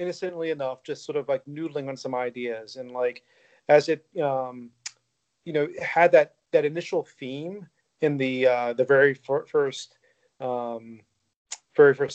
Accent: American